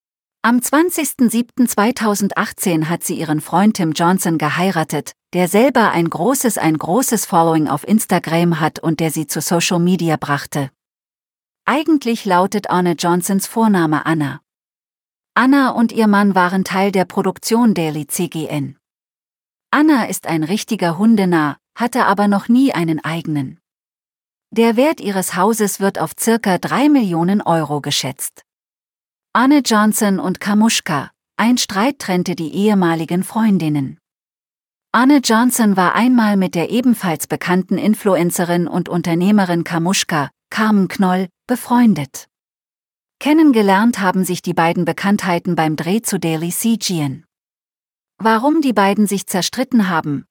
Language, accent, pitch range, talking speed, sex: German, German, 170-225 Hz, 125 wpm, female